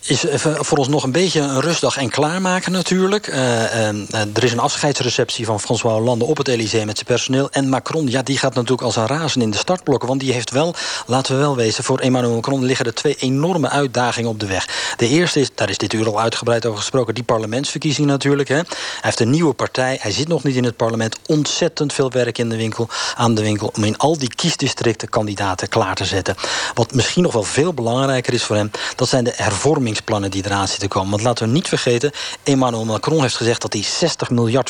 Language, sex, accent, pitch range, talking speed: Dutch, male, Dutch, 115-145 Hz, 230 wpm